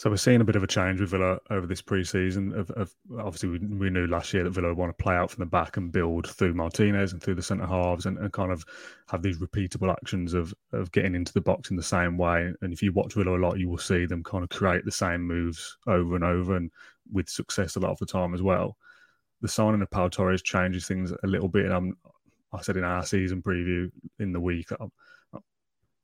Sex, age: male, 30-49